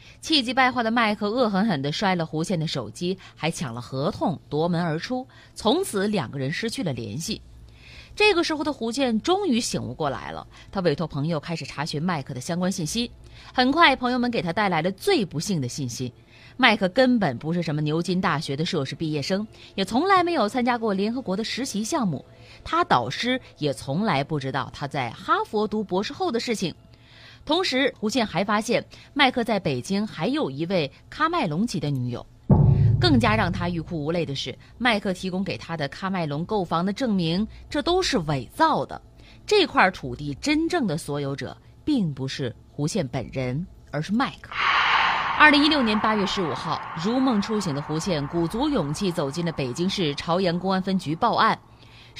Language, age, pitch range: Chinese, 20-39, 145-235 Hz